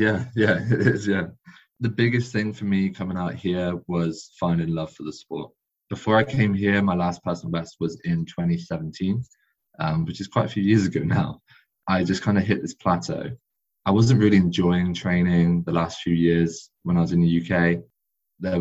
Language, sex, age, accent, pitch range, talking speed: English, male, 20-39, British, 85-100 Hz, 200 wpm